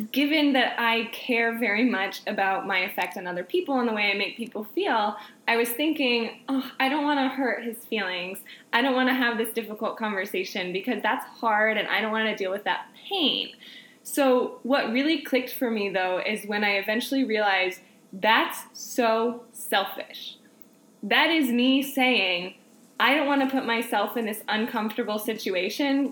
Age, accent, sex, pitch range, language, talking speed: 10-29, American, female, 215-260 Hz, English, 180 wpm